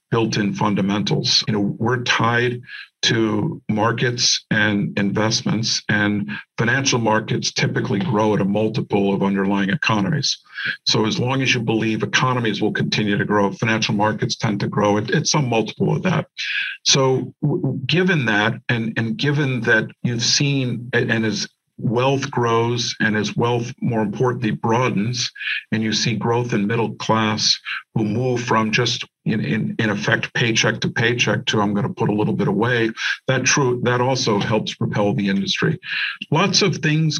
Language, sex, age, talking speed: English, male, 50-69, 160 wpm